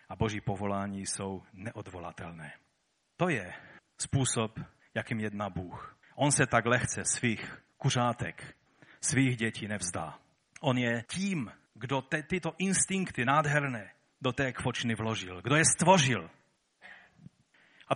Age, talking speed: 40-59, 115 wpm